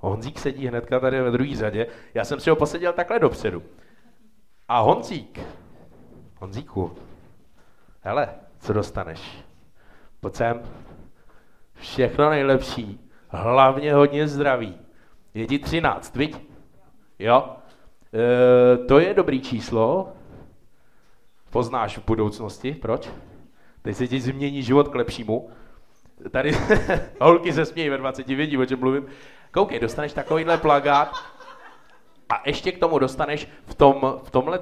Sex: male